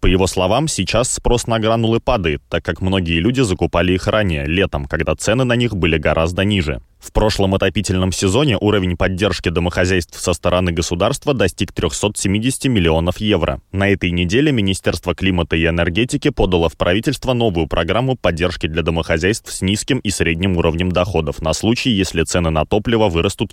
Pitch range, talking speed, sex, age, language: 85-105 Hz, 165 wpm, male, 20-39, Russian